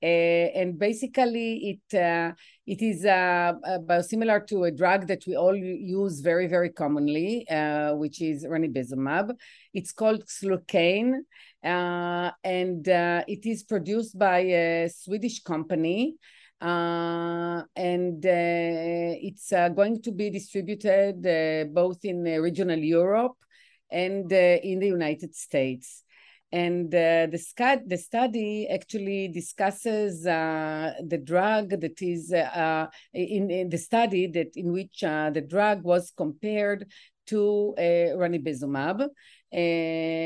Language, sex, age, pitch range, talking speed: English, female, 30-49, 165-205 Hz, 130 wpm